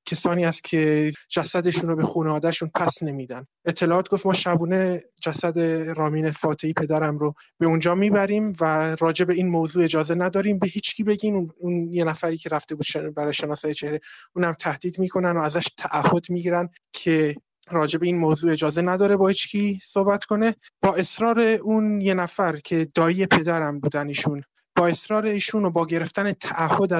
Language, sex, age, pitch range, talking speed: Persian, male, 20-39, 160-180 Hz, 160 wpm